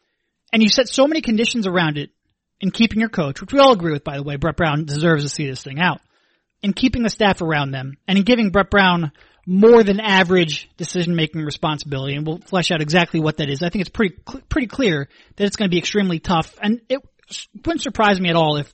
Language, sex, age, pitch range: English, male, 30-49, 155-205 Hz